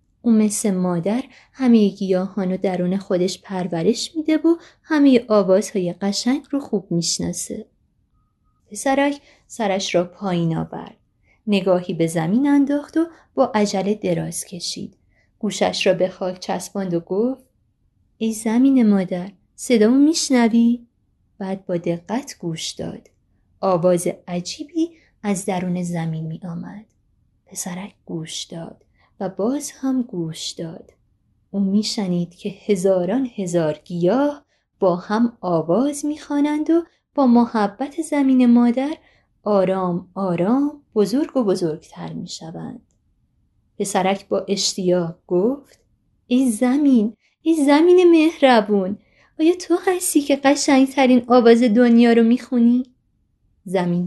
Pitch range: 180-260 Hz